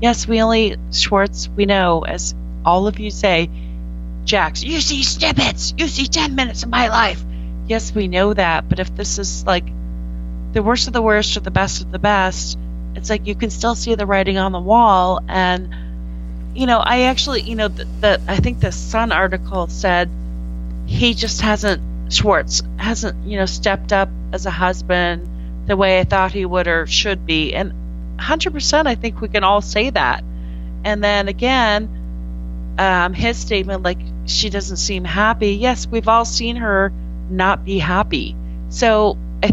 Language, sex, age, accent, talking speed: English, female, 30-49, American, 180 wpm